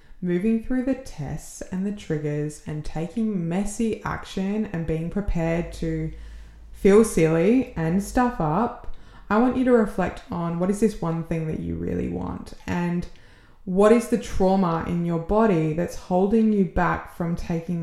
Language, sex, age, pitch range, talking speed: English, female, 20-39, 160-195 Hz, 165 wpm